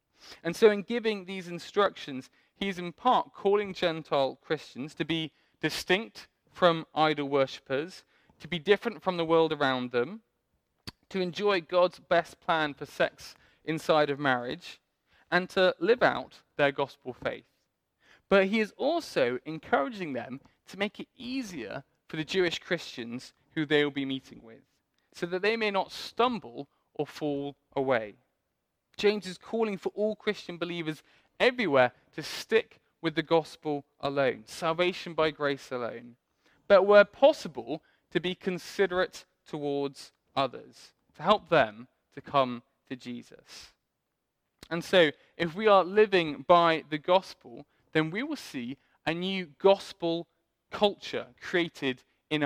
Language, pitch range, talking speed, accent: English, 145-195 Hz, 140 wpm, British